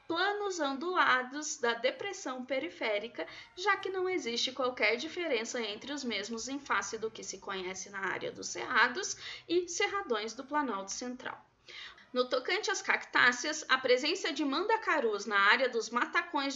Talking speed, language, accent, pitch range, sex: 150 wpm, Portuguese, Brazilian, 225-350 Hz, female